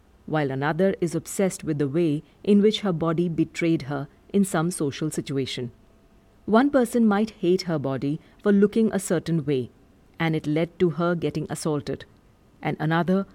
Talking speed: 165 wpm